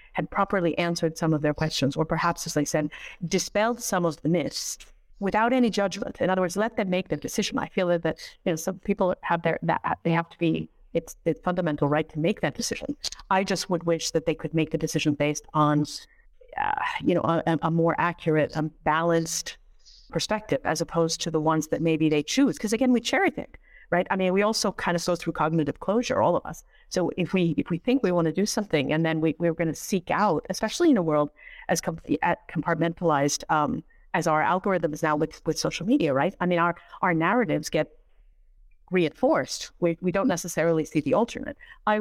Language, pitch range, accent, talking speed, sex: English, 160-195 Hz, American, 215 wpm, female